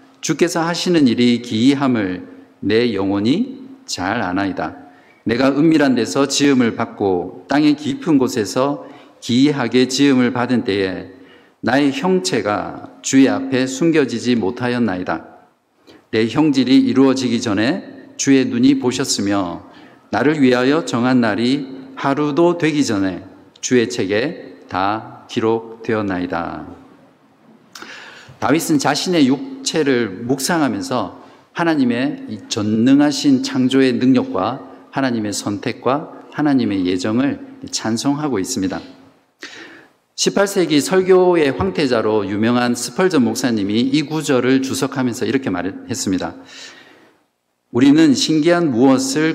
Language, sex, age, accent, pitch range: Korean, male, 50-69, native, 115-160 Hz